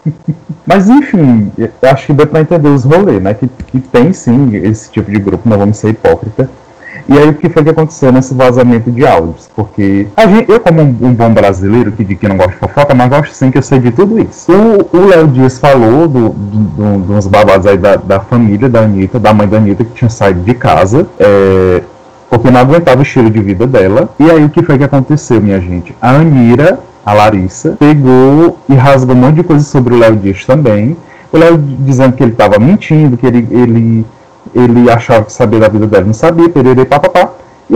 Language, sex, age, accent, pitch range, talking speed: Portuguese, male, 20-39, Brazilian, 115-155 Hz, 220 wpm